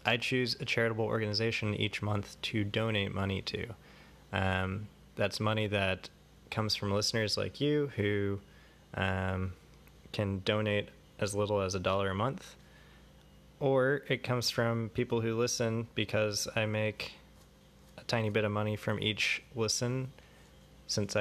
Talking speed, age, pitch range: 140 wpm, 20-39, 95-110 Hz